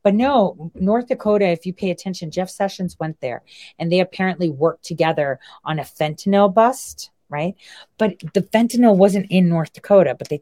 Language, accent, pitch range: English, American, 165-220 Hz